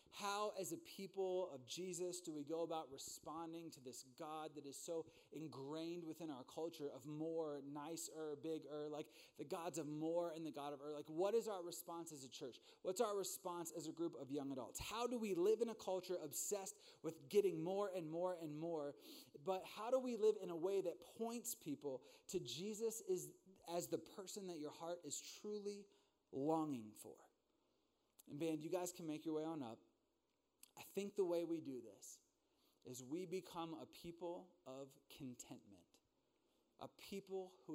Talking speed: 185 wpm